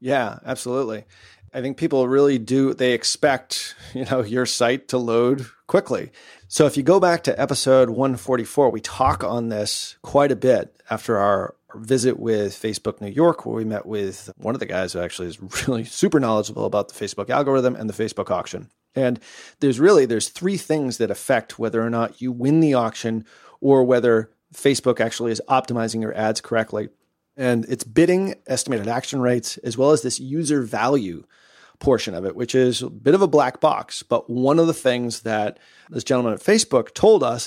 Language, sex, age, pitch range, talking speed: English, male, 30-49, 115-140 Hz, 190 wpm